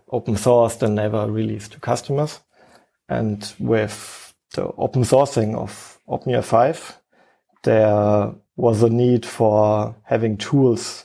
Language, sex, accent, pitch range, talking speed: English, male, German, 105-120 Hz, 120 wpm